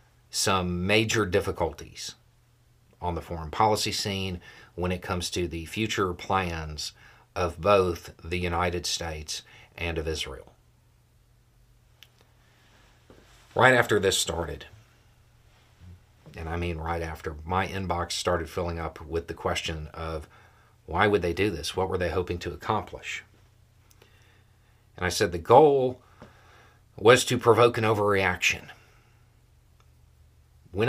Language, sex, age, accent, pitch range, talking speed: English, male, 40-59, American, 85-110 Hz, 120 wpm